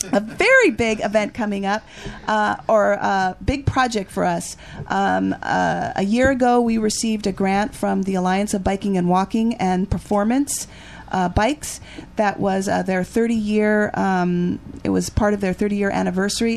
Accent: American